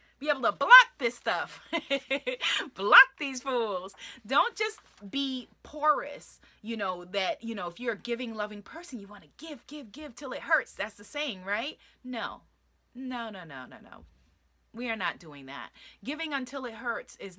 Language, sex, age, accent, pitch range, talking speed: English, female, 20-39, American, 195-265 Hz, 185 wpm